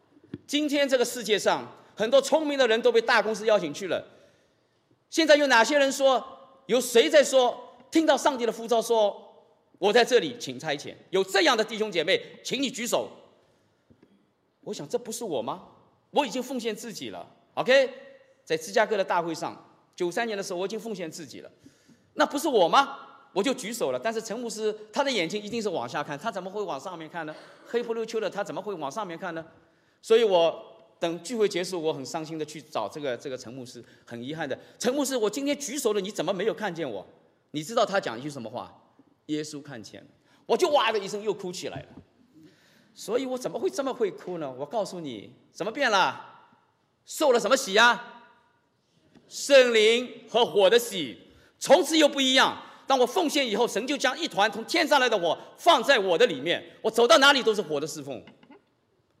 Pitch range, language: 195-270 Hz, English